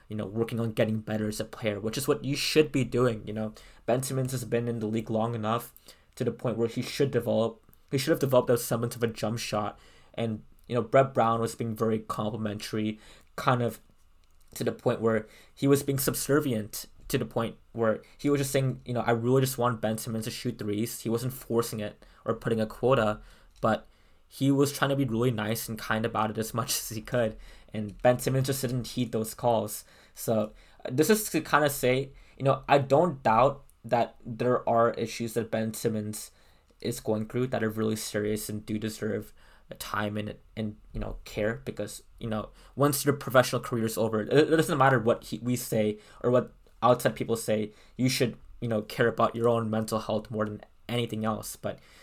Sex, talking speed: male, 215 wpm